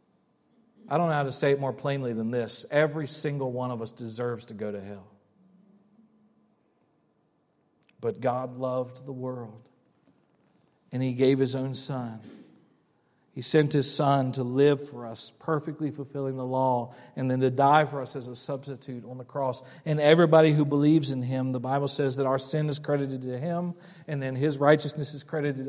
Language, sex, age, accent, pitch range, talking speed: English, male, 40-59, American, 130-155 Hz, 180 wpm